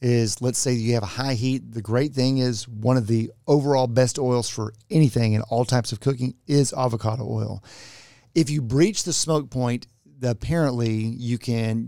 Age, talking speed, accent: 40-59, 185 wpm, American